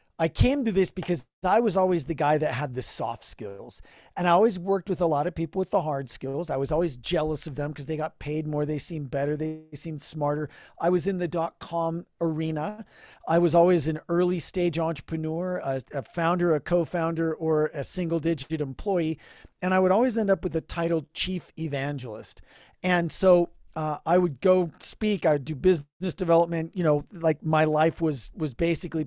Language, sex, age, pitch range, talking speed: English, male, 40-59, 155-180 Hz, 200 wpm